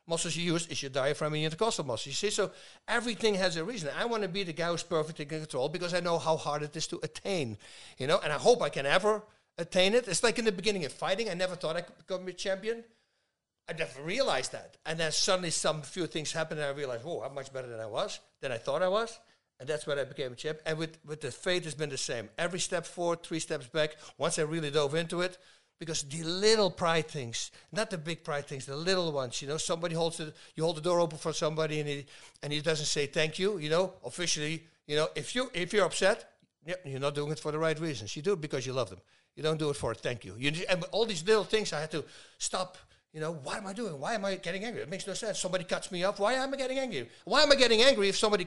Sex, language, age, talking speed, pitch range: male, English, 60-79, 275 wpm, 155-195 Hz